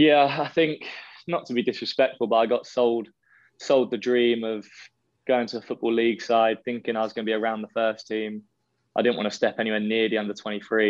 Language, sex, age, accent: English, male, 20-39, British